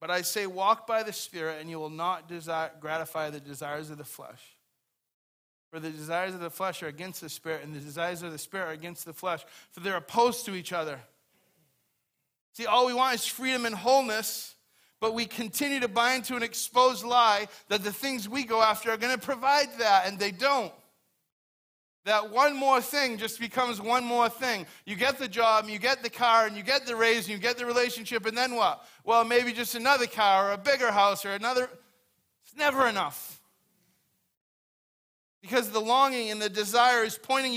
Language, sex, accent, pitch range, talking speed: English, male, American, 180-245 Hz, 205 wpm